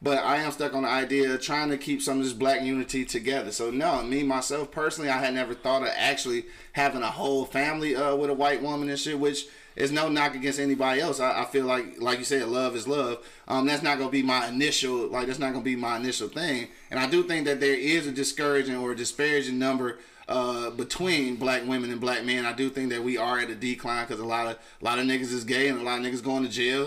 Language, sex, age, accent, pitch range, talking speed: English, male, 20-39, American, 125-145 Hz, 265 wpm